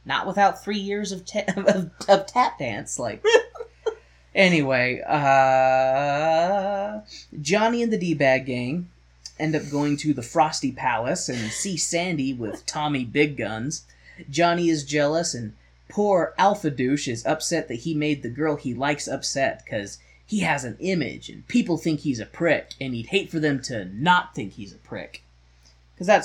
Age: 20-39